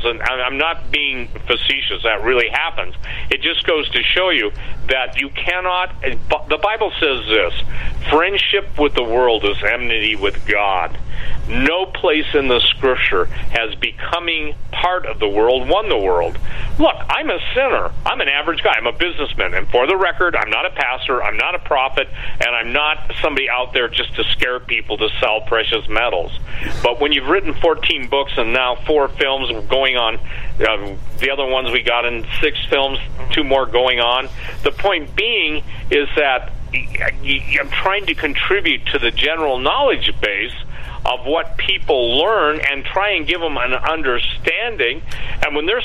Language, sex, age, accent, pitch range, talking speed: English, male, 50-69, American, 120-160 Hz, 175 wpm